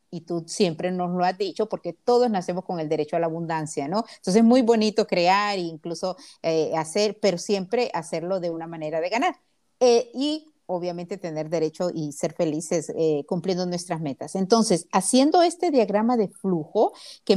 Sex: female